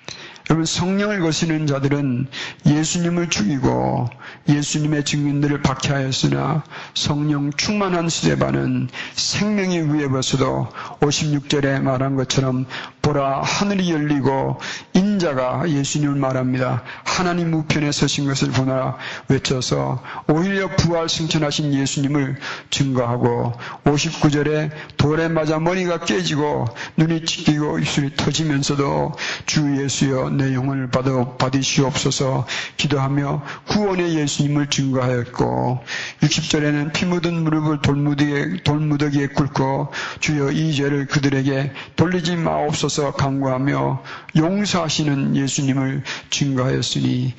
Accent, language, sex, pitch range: native, Korean, male, 135-160 Hz